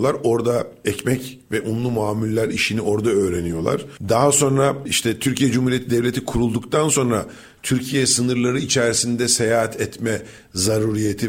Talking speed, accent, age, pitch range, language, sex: 115 wpm, native, 50-69, 110-135 Hz, Turkish, male